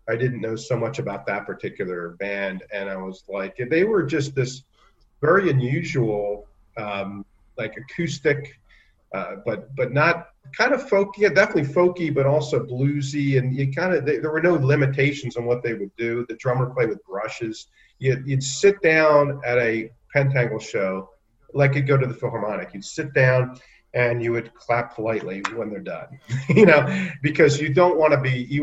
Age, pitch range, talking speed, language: 40-59, 115-155 Hz, 185 wpm, English